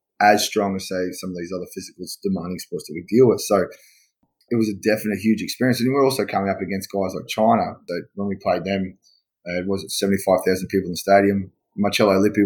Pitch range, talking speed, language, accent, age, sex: 95-110 Hz, 220 wpm, English, Australian, 20-39, male